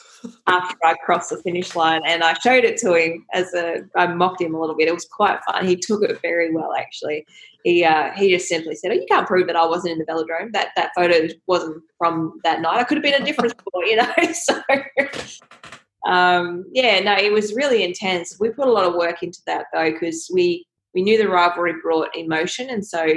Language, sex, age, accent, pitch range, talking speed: English, female, 20-39, Australian, 165-205 Hz, 230 wpm